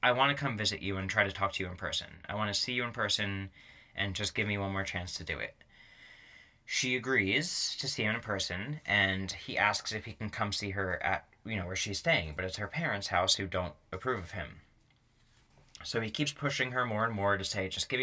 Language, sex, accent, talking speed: English, male, American, 250 wpm